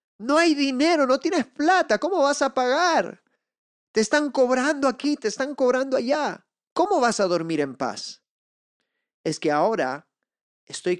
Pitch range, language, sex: 145-215 Hz, Spanish, male